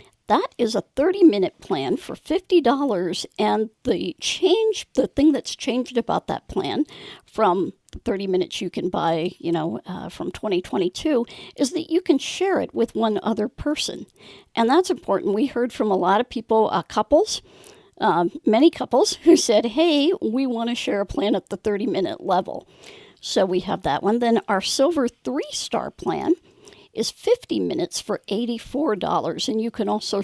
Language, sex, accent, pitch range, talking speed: English, female, American, 210-325 Hz, 170 wpm